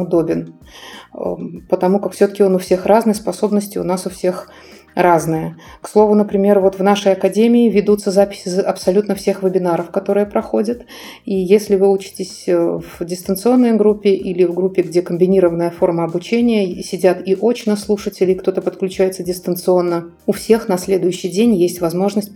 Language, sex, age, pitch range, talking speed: Russian, female, 30-49, 180-205 Hz, 150 wpm